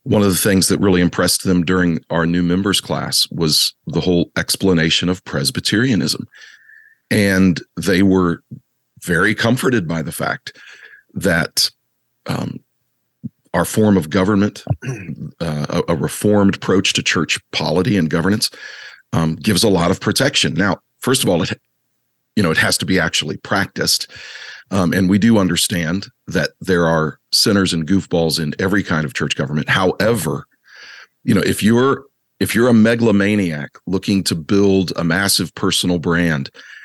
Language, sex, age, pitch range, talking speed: English, male, 40-59, 85-100 Hz, 155 wpm